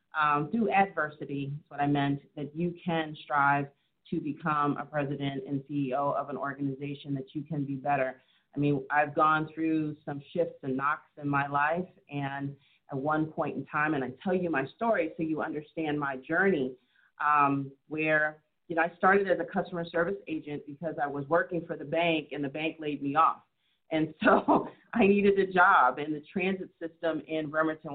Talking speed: 190 wpm